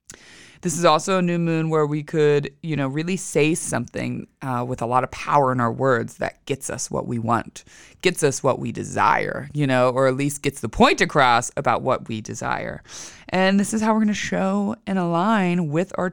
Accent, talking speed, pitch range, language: American, 220 wpm, 130-180 Hz, English